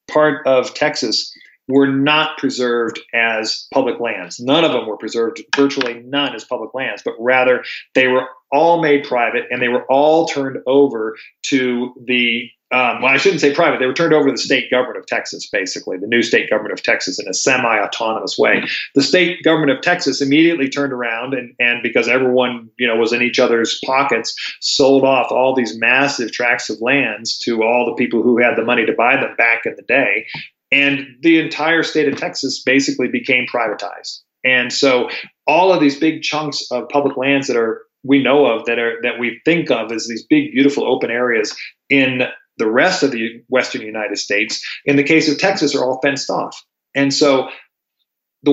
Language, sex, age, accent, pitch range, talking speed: English, male, 40-59, American, 120-145 Hz, 195 wpm